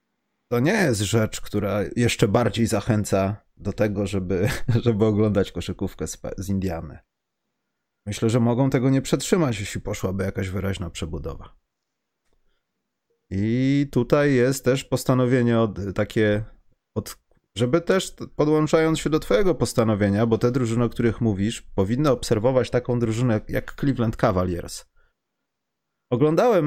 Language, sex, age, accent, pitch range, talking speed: Polish, male, 30-49, native, 100-125 Hz, 125 wpm